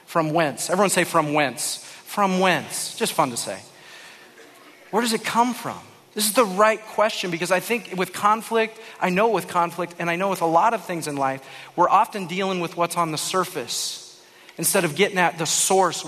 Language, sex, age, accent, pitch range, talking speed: English, male, 40-59, American, 155-190 Hz, 205 wpm